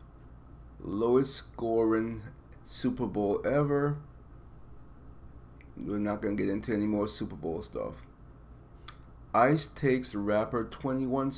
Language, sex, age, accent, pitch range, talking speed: English, male, 30-49, American, 85-125 Hz, 105 wpm